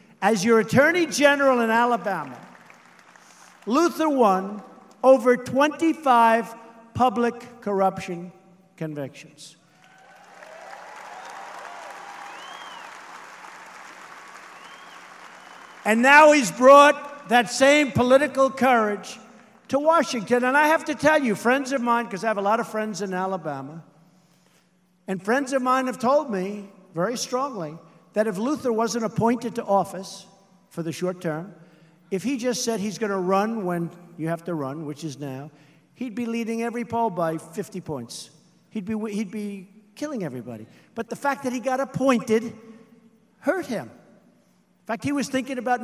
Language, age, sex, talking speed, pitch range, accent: English, 50-69, male, 140 wpm, 190-265 Hz, American